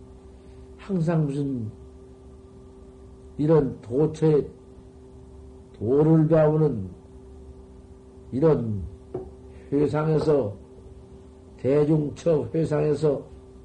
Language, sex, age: Korean, male, 50-69